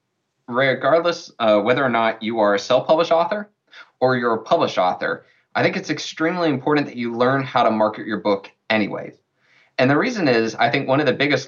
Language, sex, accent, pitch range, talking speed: English, male, American, 110-155 Hz, 205 wpm